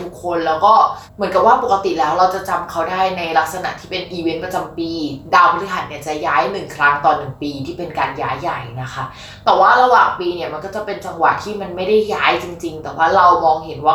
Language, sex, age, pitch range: Thai, female, 20-39, 165-225 Hz